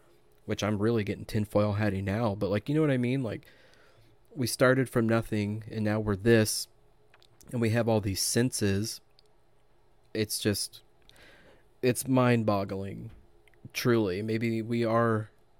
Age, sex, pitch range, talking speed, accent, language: 30-49, male, 100-115 Hz, 145 wpm, American, English